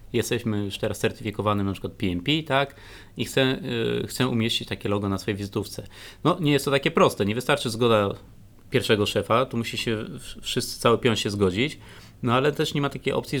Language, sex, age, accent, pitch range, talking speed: Polish, male, 30-49, native, 110-135 Hz, 195 wpm